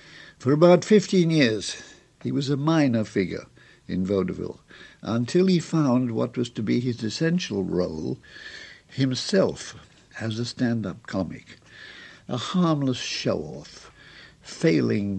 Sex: male